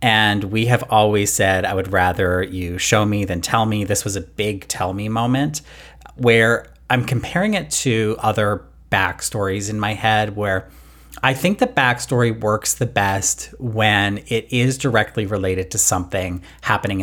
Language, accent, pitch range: English, American, 95-125 Hz